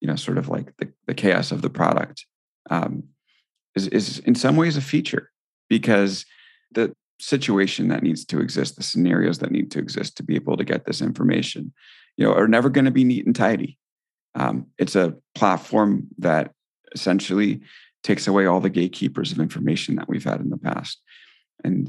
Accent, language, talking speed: American, English, 190 wpm